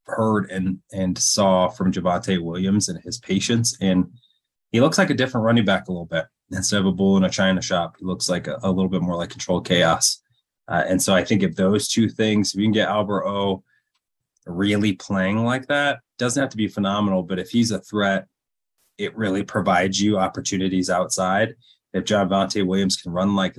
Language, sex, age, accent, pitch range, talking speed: English, male, 20-39, American, 95-115 Hz, 205 wpm